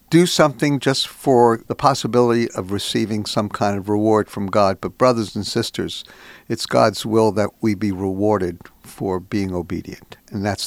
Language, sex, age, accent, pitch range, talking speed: English, male, 60-79, American, 105-155 Hz, 170 wpm